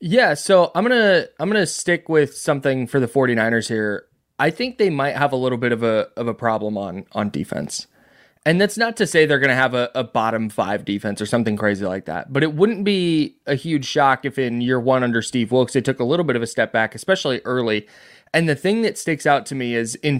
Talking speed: 245 wpm